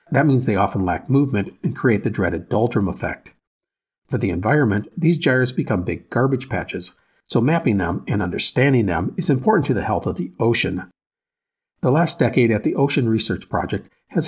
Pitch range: 100-145 Hz